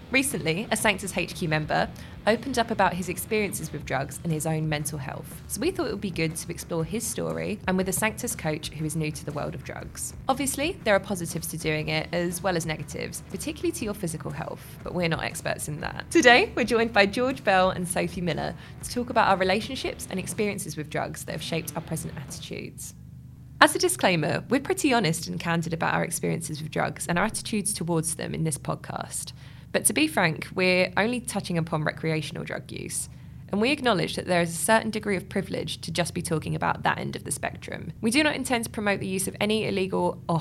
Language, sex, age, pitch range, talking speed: English, female, 20-39, 160-210 Hz, 225 wpm